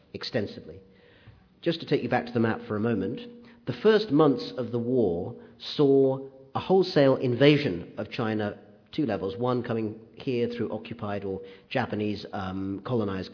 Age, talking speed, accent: 40-59, 155 wpm, British